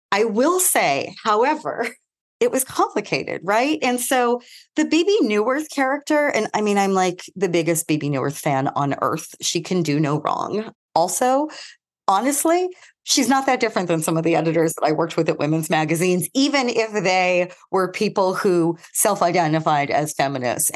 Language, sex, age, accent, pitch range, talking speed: English, female, 40-59, American, 160-220 Hz, 170 wpm